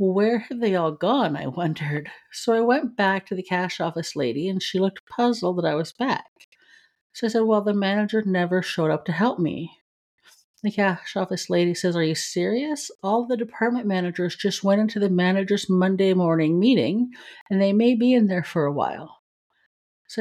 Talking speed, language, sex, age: 195 wpm, English, female, 50-69